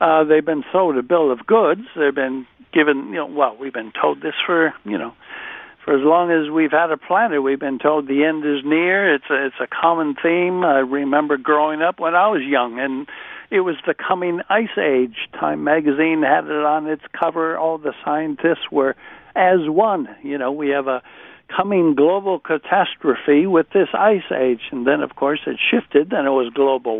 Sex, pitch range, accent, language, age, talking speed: male, 135-175 Hz, American, English, 60-79, 200 wpm